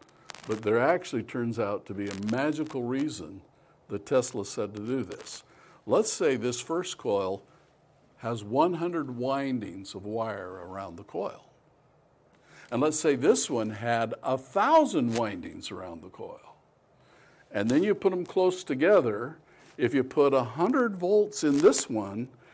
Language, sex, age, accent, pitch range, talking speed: English, male, 60-79, American, 120-170 Hz, 145 wpm